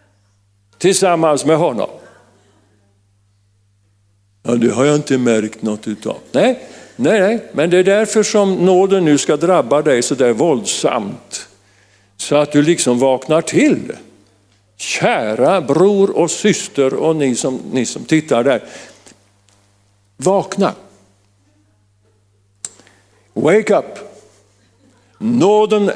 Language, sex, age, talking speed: Swedish, male, 50-69, 110 wpm